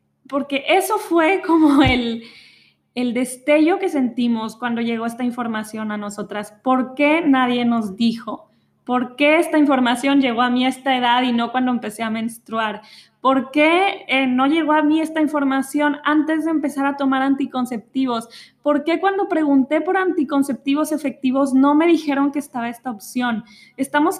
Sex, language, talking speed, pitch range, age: female, Spanish, 165 wpm, 230-295 Hz, 20-39